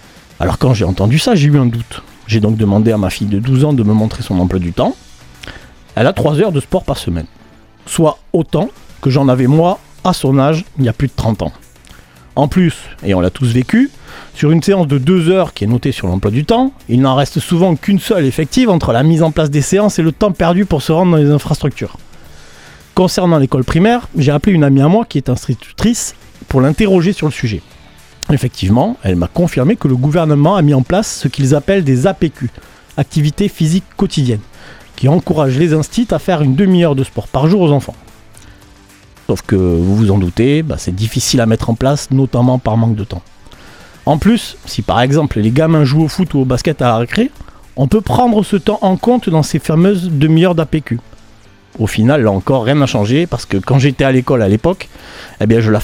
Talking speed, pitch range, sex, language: 220 wpm, 110-165 Hz, male, French